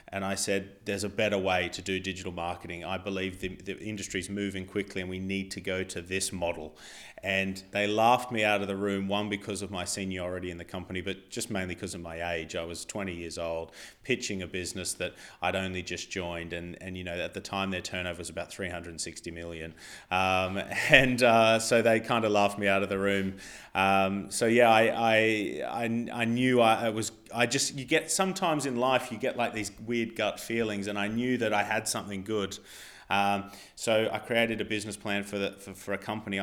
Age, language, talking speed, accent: 30-49, English, 220 wpm, Australian